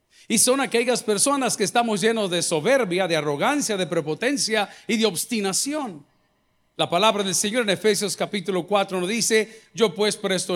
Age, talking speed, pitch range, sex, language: 50-69, 165 wpm, 175-240 Hz, male, Spanish